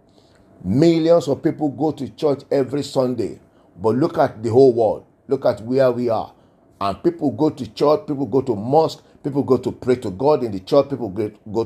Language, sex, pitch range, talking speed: English, male, 115-145 Hz, 200 wpm